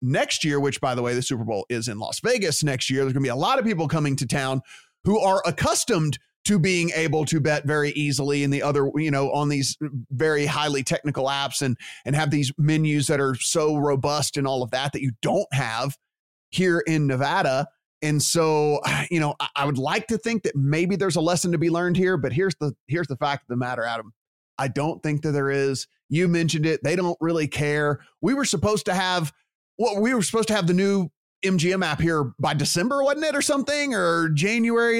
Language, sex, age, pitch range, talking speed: English, male, 30-49, 140-170 Hz, 225 wpm